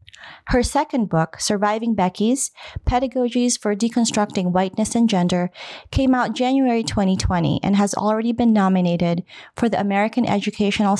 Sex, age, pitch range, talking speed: female, 30-49, 180-230 Hz, 130 wpm